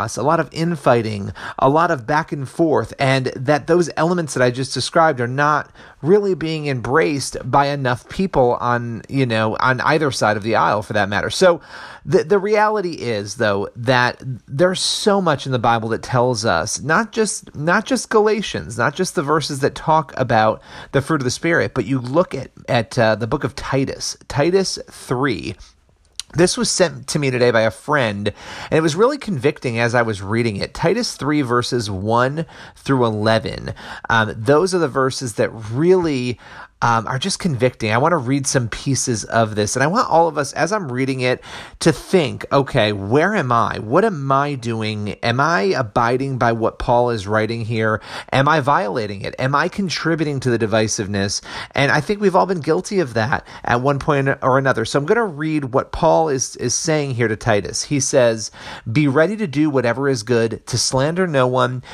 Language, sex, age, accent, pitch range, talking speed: English, male, 30-49, American, 115-160 Hz, 200 wpm